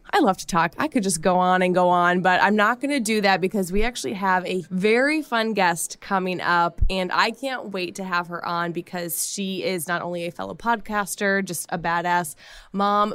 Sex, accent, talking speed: female, American, 225 wpm